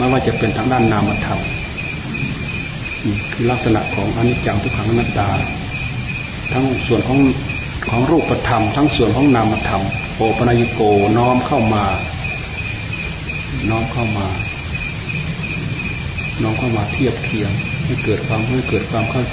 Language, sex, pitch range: Thai, male, 110-130 Hz